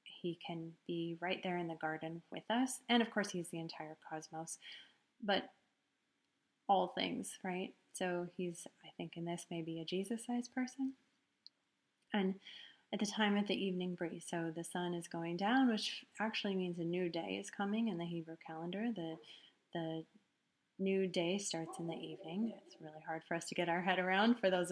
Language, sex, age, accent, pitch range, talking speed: English, female, 30-49, American, 170-225 Hz, 185 wpm